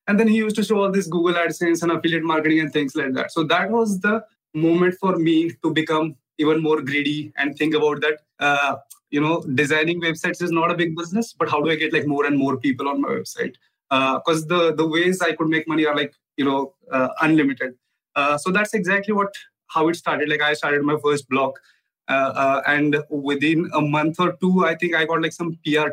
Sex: male